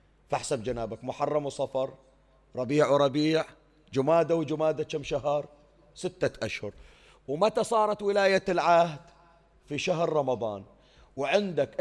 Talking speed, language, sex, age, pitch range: 100 wpm, Arabic, male, 40-59, 130-170 Hz